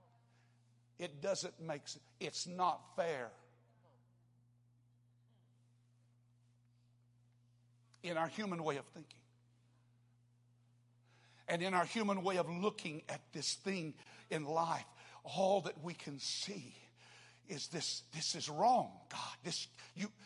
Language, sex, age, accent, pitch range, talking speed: English, male, 60-79, American, 120-165 Hz, 115 wpm